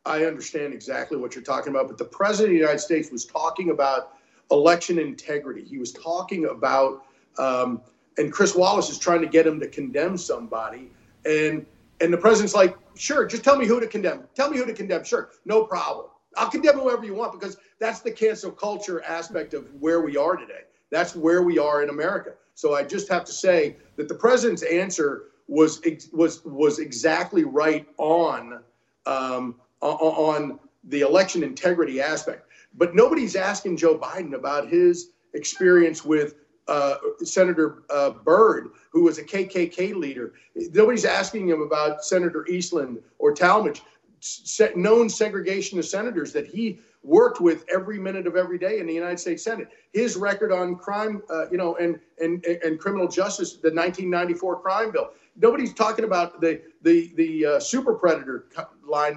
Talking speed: 170 wpm